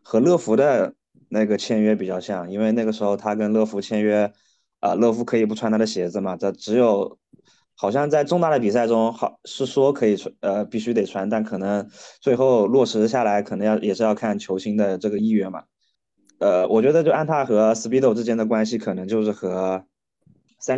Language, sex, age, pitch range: Chinese, male, 20-39, 105-130 Hz